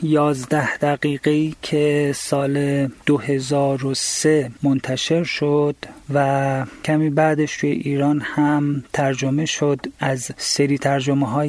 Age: 40-59